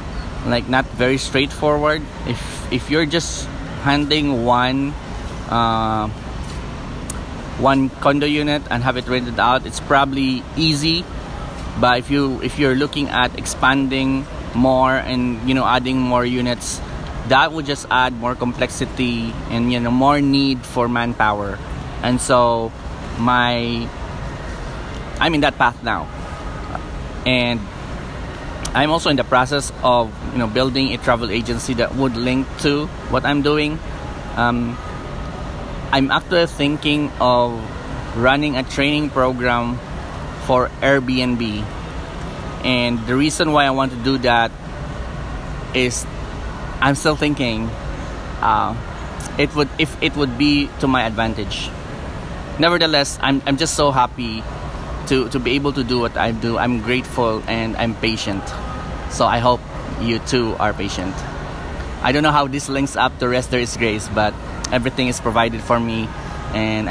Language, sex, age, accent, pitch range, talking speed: English, male, 20-39, Filipino, 115-140 Hz, 145 wpm